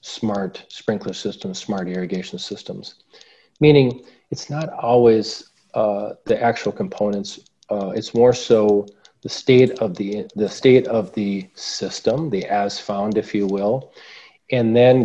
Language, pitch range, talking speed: English, 100-120 Hz, 140 wpm